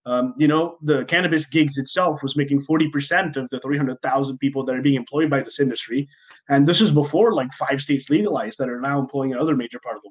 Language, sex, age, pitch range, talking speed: English, male, 20-39, 135-160 Hz, 225 wpm